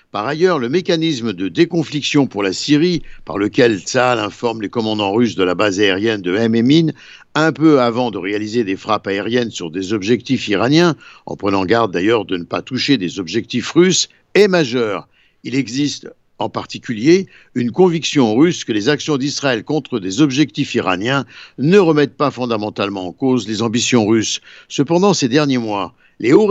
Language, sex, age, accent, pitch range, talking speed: Italian, male, 60-79, French, 115-165 Hz, 175 wpm